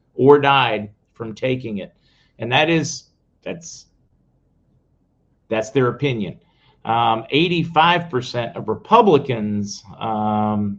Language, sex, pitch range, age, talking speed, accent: English, male, 110-140 Hz, 50-69, 100 wpm, American